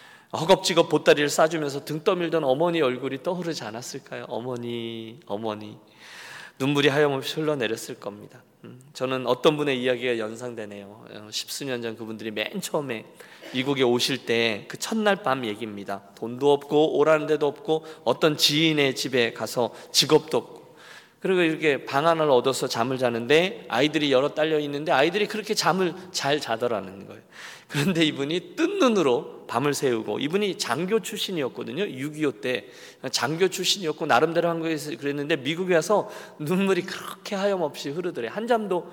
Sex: male